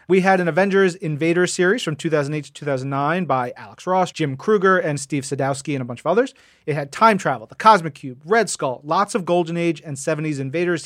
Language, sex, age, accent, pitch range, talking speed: English, male, 30-49, American, 140-175 Hz, 215 wpm